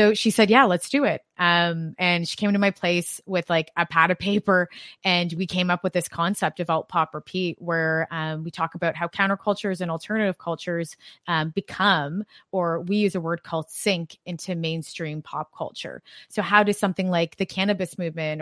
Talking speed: 200 wpm